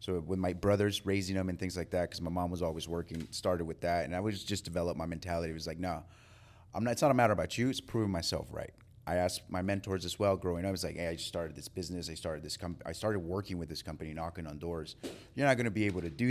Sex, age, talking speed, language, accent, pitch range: male, 30-49, 270 wpm, English, American, 85-105 Hz